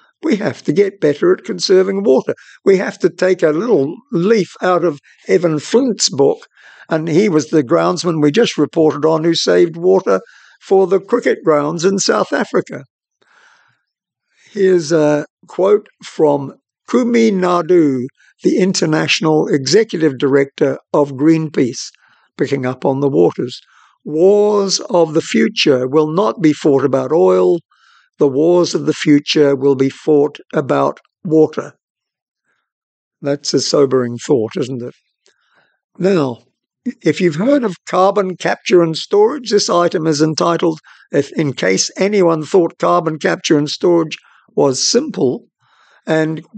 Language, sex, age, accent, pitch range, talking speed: English, male, 60-79, British, 155-195 Hz, 140 wpm